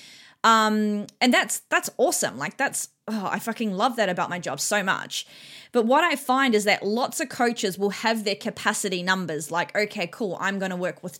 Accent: Australian